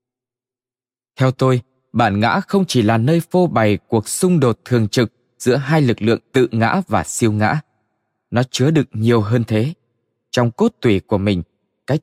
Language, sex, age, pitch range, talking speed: Vietnamese, male, 20-39, 115-155 Hz, 180 wpm